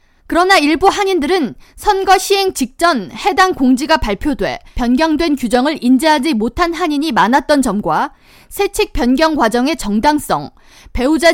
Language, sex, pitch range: Korean, female, 260-365 Hz